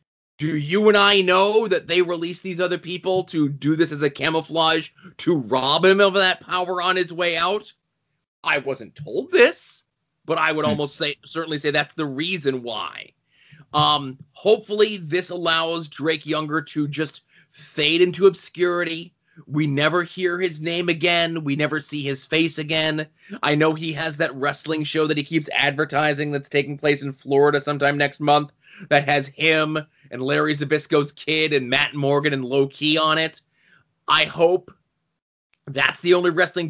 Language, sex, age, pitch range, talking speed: English, male, 30-49, 150-180 Hz, 170 wpm